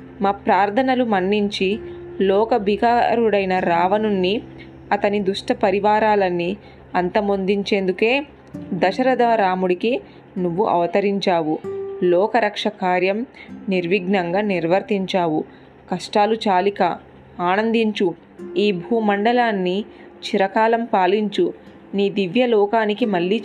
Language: Telugu